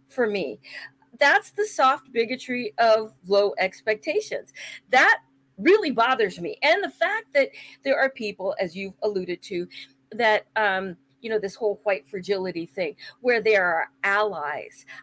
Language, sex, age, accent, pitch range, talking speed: English, female, 40-59, American, 200-315 Hz, 150 wpm